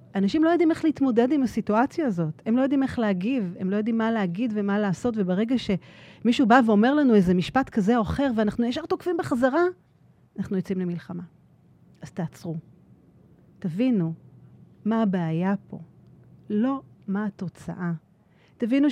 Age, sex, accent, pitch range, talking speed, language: 40-59, female, native, 170-235 Hz, 150 wpm, Hebrew